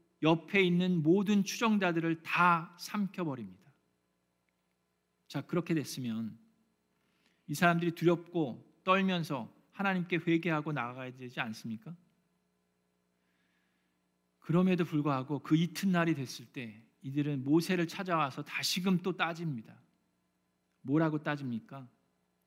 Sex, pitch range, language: male, 105-175 Hz, Korean